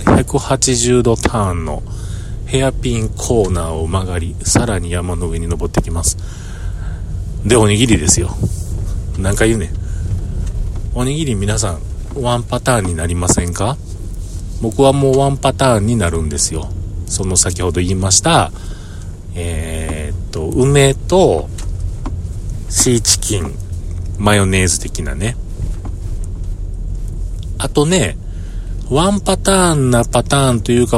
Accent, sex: native, male